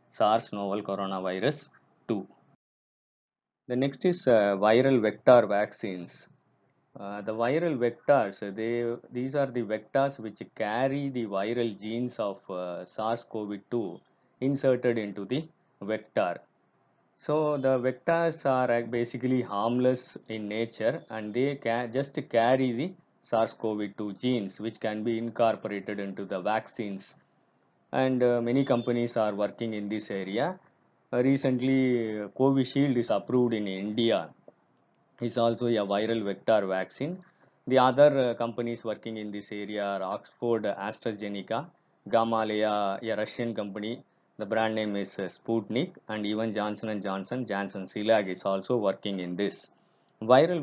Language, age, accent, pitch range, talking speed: Tamil, 20-39, native, 105-125 Hz, 130 wpm